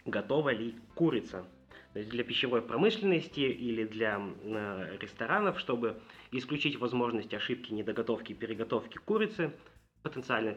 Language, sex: Russian, male